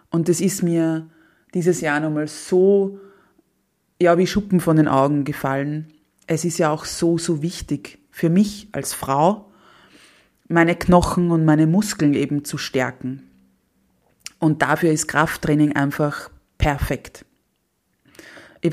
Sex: female